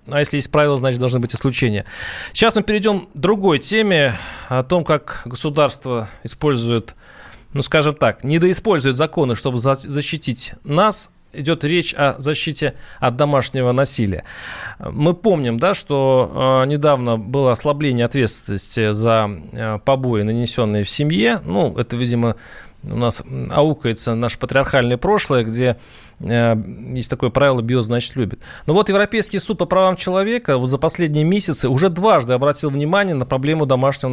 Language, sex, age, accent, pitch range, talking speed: Russian, male, 30-49, native, 125-160 Hz, 140 wpm